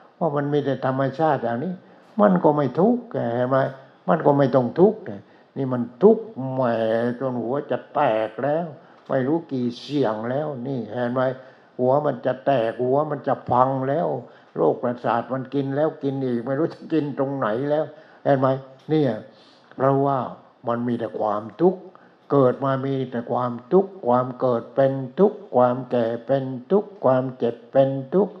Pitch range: 120-150 Hz